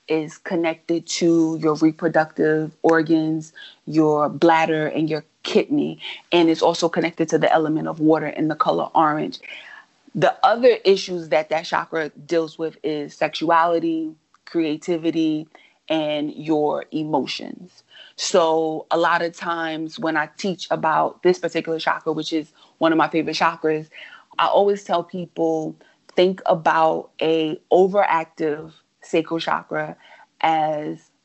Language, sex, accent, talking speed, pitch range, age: English, female, American, 130 wpm, 155-175 Hz, 30-49